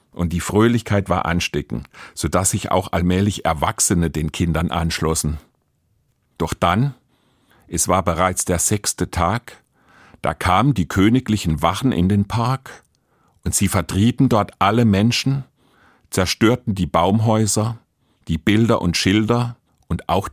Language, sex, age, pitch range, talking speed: German, male, 50-69, 85-105 Hz, 135 wpm